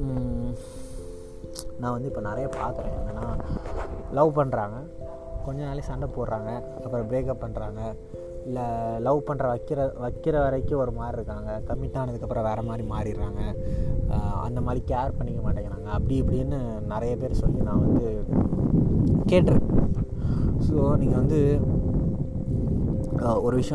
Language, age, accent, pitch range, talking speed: Tamil, 20-39, native, 105-130 Hz, 120 wpm